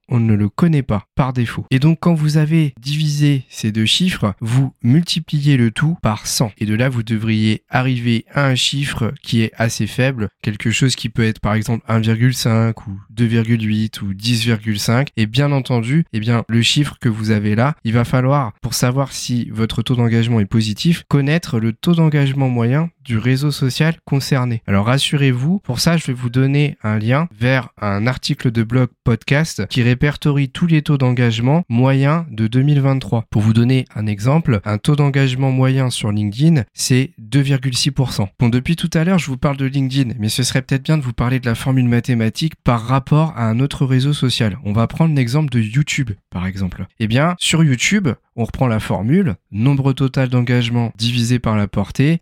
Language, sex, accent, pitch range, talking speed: French, male, French, 115-140 Hz, 195 wpm